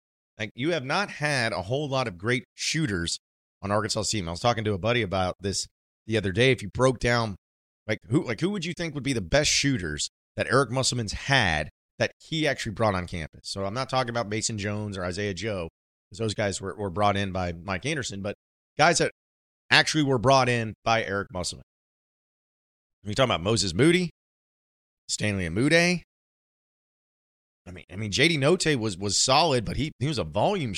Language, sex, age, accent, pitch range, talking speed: English, male, 30-49, American, 90-130 Hz, 200 wpm